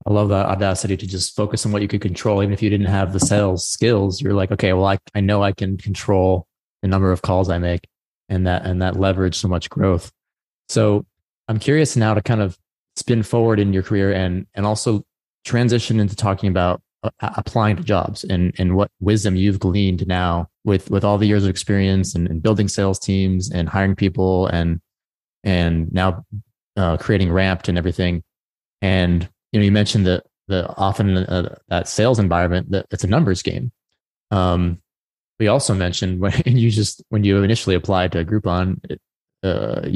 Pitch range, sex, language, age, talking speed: 90-105 Hz, male, English, 20-39, 195 wpm